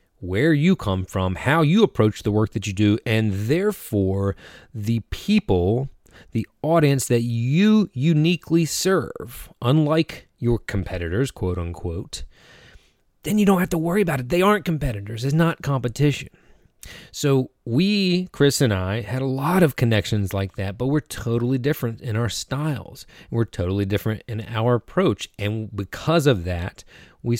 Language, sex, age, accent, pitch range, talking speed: English, male, 30-49, American, 95-135 Hz, 155 wpm